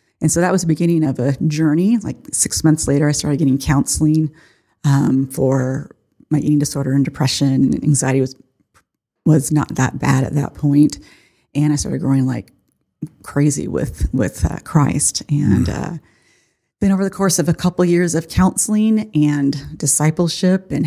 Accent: American